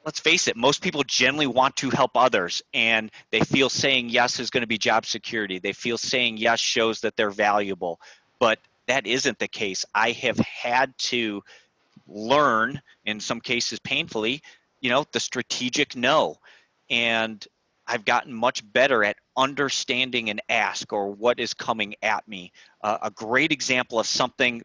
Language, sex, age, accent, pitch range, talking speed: English, male, 30-49, American, 115-140 Hz, 165 wpm